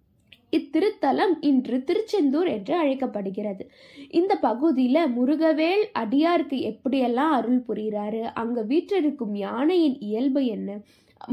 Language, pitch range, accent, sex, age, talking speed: Tamil, 225-320 Hz, native, female, 20-39, 90 wpm